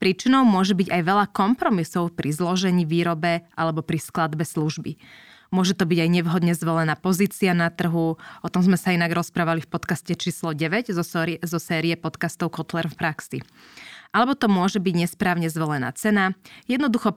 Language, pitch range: Slovak, 160-195 Hz